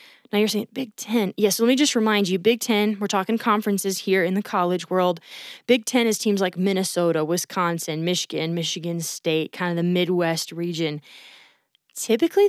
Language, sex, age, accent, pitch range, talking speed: English, female, 20-39, American, 195-255 Hz, 185 wpm